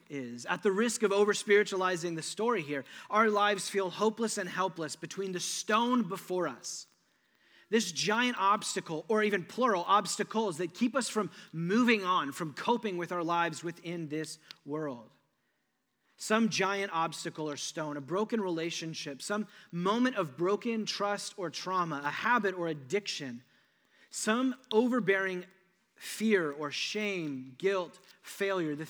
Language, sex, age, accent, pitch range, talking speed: English, male, 30-49, American, 150-205 Hz, 140 wpm